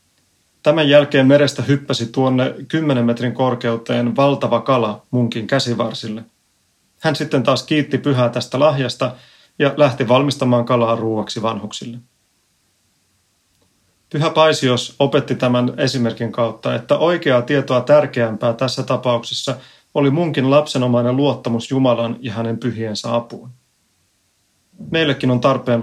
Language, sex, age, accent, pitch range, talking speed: Finnish, male, 30-49, native, 115-135 Hz, 115 wpm